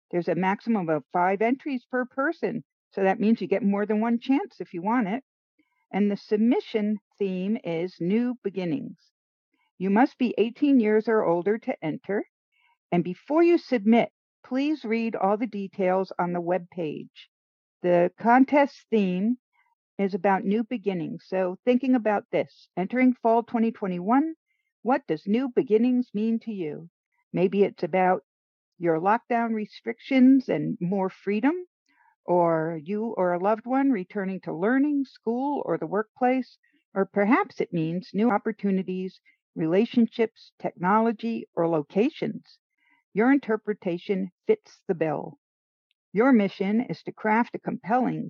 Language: English